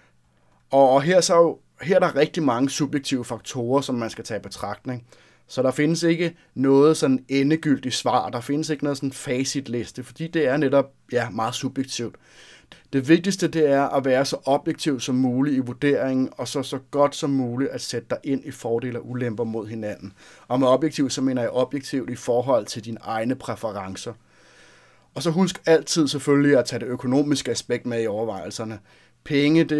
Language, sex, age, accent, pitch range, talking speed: Danish, male, 30-49, native, 115-140 Hz, 190 wpm